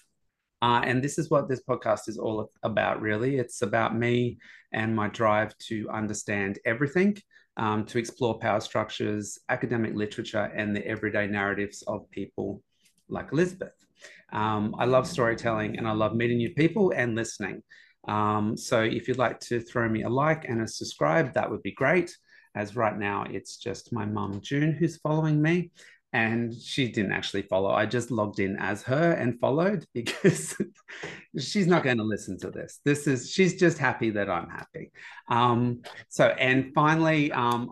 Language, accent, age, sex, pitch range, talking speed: English, Australian, 30-49, male, 105-130 Hz, 175 wpm